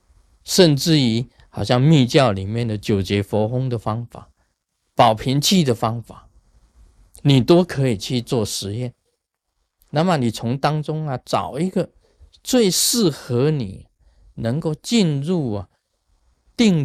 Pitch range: 100-165 Hz